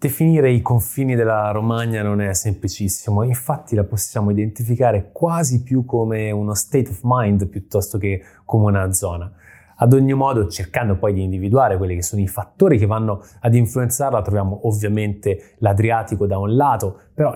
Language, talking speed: Italian, 160 wpm